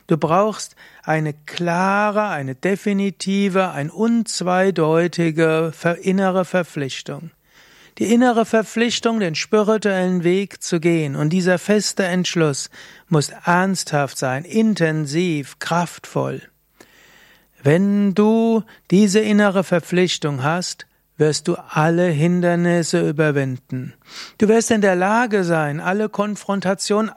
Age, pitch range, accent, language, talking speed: 60-79, 160-195 Hz, German, German, 100 wpm